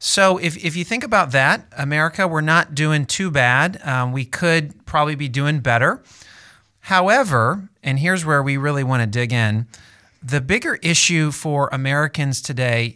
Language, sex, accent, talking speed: English, male, American, 165 wpm